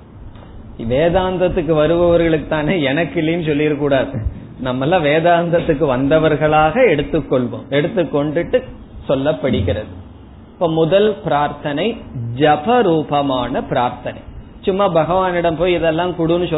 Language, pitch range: Tamil, 135-175 Hz